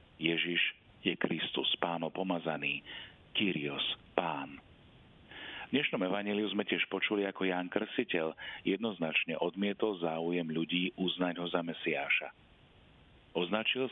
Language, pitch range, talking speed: Slovak, 85-100 Hz, 110 wpm